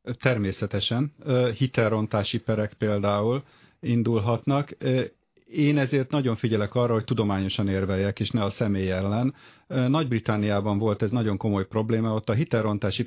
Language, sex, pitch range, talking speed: Hungarian, male, 105-130 Hz, 125 wpm